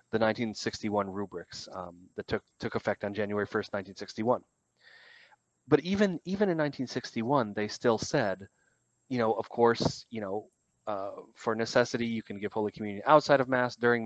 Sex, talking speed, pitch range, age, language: male, 160 wpm, 105-130 Hz, 30-49, English